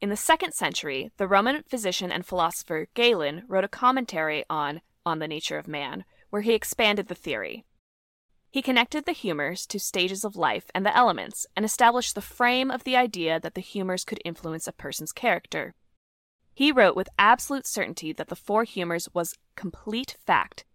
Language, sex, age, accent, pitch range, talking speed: English, female, 20-39, American, 175-245 Hz, 180 wpm